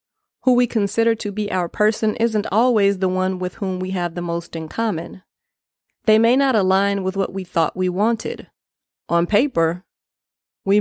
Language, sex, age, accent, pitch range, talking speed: English, female, 30-49, American, 175-215 Hz, 180 wpm